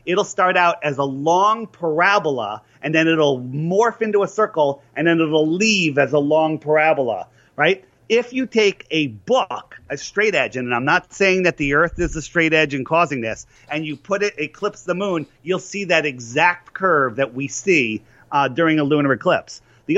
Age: 40-59